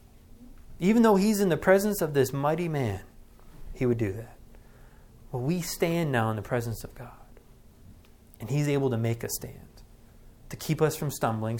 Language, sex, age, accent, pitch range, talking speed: English, male, 30-49, American, 115-155 Hz, 180 wpm